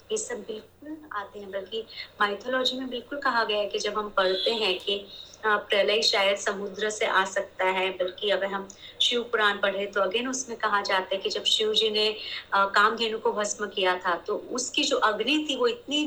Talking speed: 200 wpm